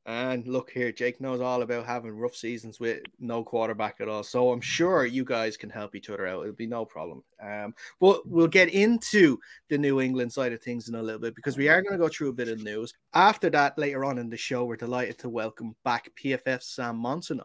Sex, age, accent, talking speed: male, 20-39, Irish, 240 wpm